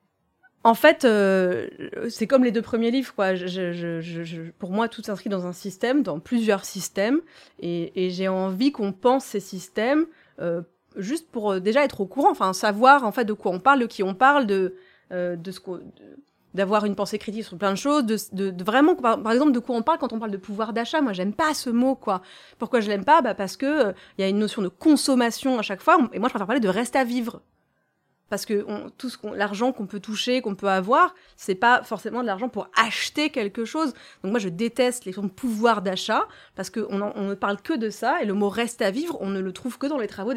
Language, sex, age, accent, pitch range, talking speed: French, female, 30-49, French, 195-255 Hz, 255 wpm